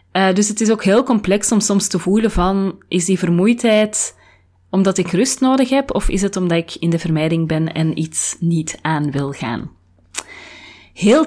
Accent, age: Belgian, 20-39